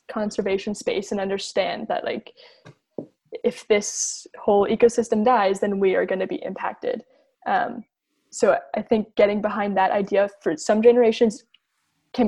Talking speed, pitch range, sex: 145 wpm, 195-235 Hz, female